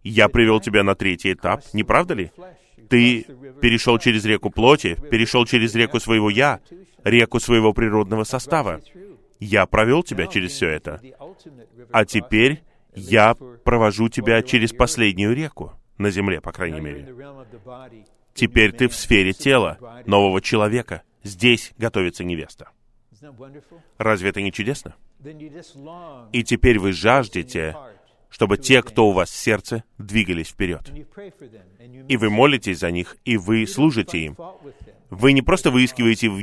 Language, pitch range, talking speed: Russian, 105-130 Hz, 135 wpm